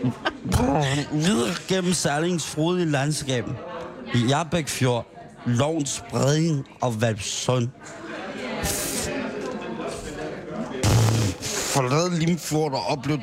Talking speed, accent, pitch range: 75 wpm, native, 115-155 Hz